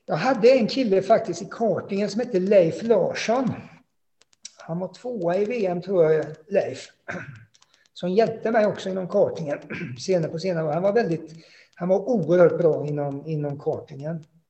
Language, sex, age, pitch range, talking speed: Swedish, male, 50-69, 150-195 Hz, 150 wpm